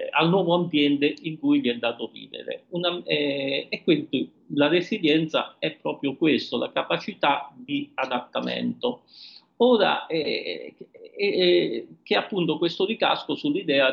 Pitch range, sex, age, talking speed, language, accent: 135-210 Hz, male, 50-69, 135 wpm, Italian, native